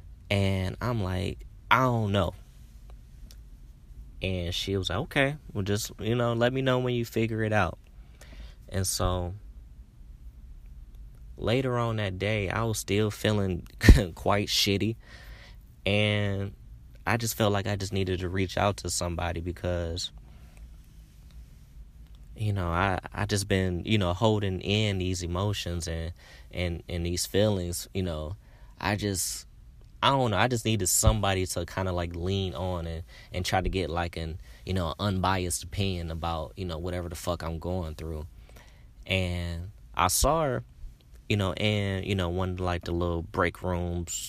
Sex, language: male, English